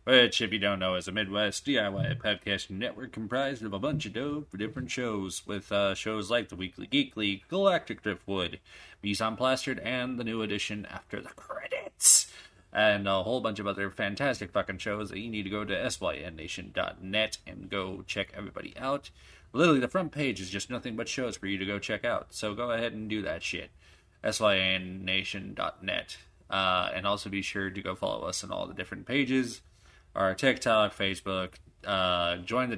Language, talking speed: English, 185 wpm